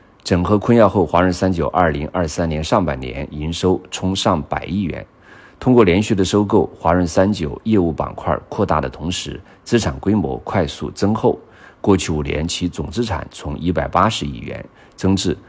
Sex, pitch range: male, 80-95 Hz